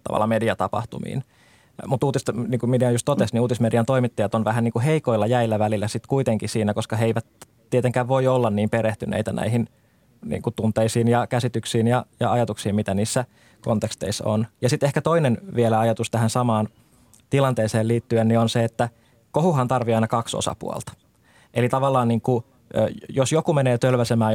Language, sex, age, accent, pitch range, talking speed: Finnish, male, 20-39, native, 110-125 Hz, 165 wpm